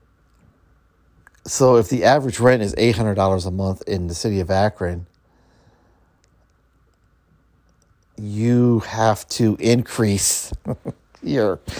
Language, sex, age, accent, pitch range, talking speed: English, male, 50-69, American, 95-115 Hz, 95 wpm